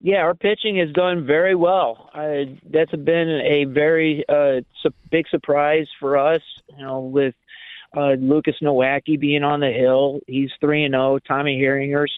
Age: 40-59